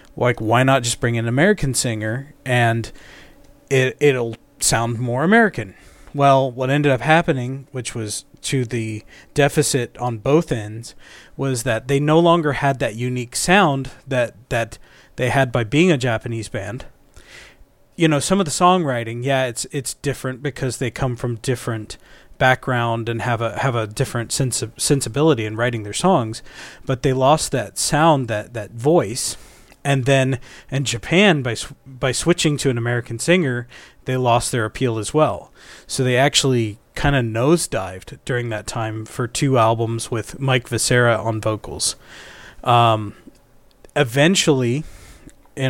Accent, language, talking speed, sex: American, English, 160 wpm, male